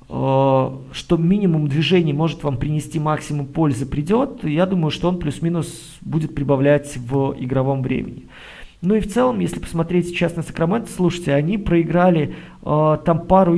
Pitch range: 145-175 Hz